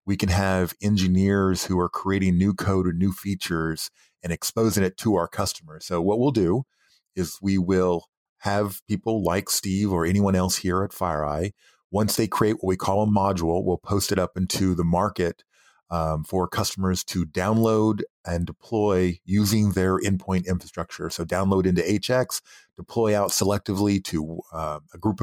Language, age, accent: English, 30-49, American